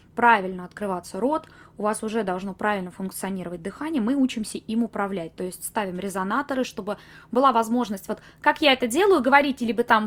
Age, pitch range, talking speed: 20-39, 195-245 Hz, 175 wpm